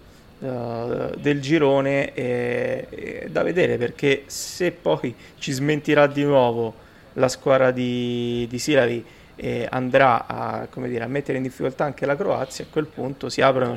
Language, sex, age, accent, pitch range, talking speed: Italian, male, 20-39, native, 120-140 Hz, 155 wpm